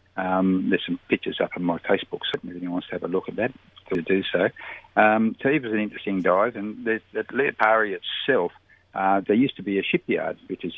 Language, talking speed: English, 240 wpm